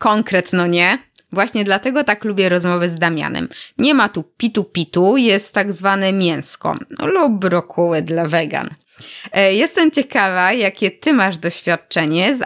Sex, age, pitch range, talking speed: female, 20-39, 170-225 Hz, 145 wpm